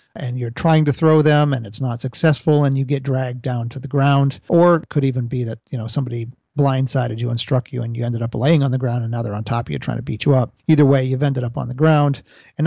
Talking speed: 290 wpm